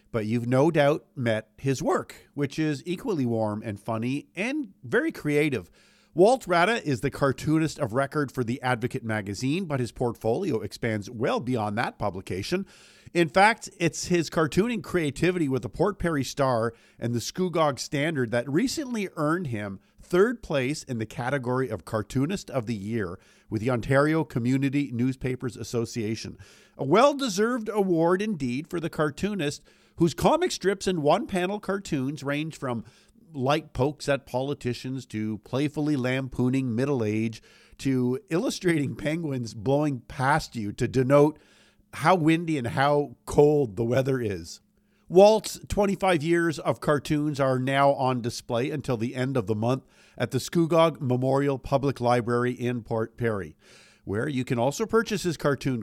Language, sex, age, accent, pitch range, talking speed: English, male, 50-69, American, 120-165 Hz, 150 wpm